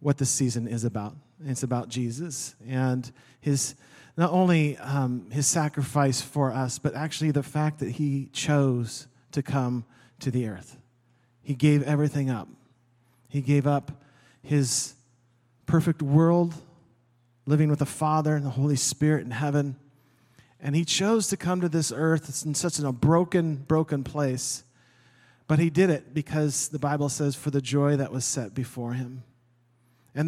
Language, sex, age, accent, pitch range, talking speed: English, male, 40-59, American, 125-155 Hz, 160 wpm